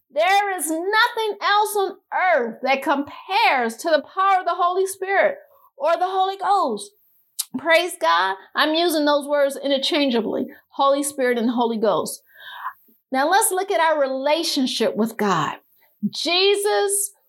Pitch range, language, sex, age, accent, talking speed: 265-365 Hz, English, female, 50-69, American, 140 wpm